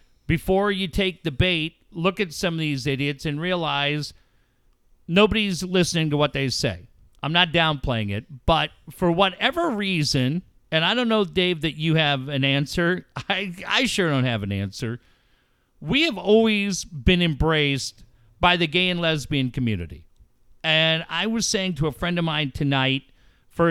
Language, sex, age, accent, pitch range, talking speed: English, male, 50-69, American, 140-190 Hz, 165 wpm